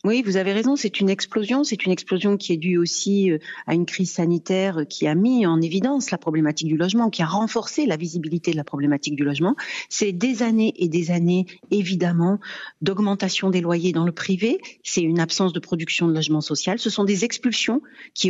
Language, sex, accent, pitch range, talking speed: French, female, French, 170-220 Hz, 205 wpm